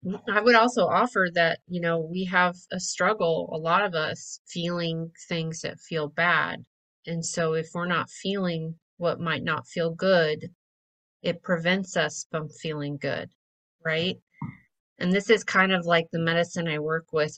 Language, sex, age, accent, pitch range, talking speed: English, female, 30-49, American, 155-180 Hz, 170 wpm